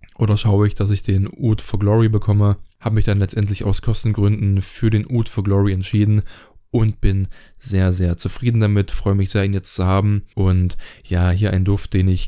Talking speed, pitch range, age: 205 wpm, 95-110 Hz, 20-39